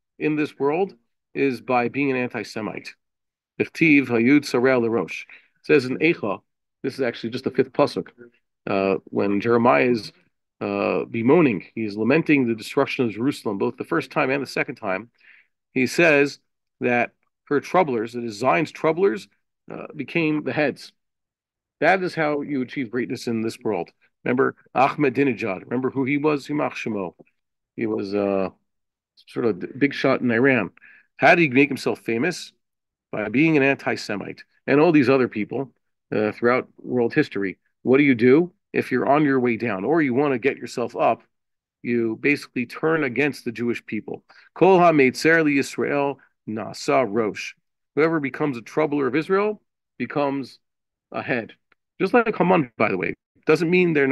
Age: 40-59